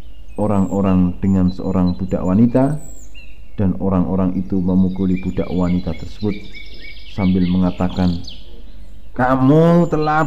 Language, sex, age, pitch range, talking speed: Indonesian, male, 50-69, 80-110 Hz, 95 wpm